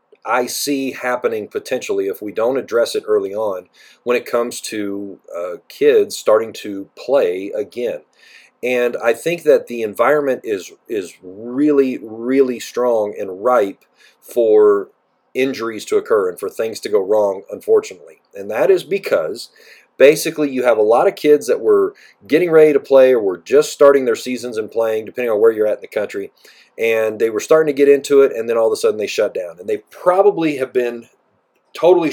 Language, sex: English, male